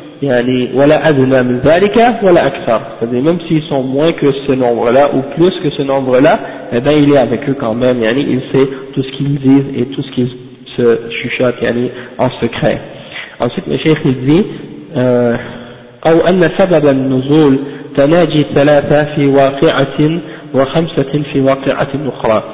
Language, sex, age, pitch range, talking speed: French, male, 50-69, 125-155 Hz, 115 wpm